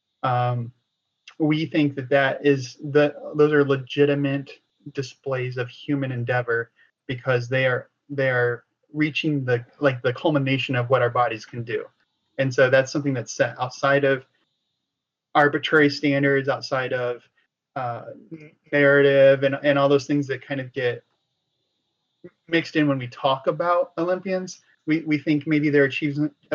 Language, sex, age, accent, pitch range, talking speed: English, male, 30-49, American, 130-150 Hz, 145 wpm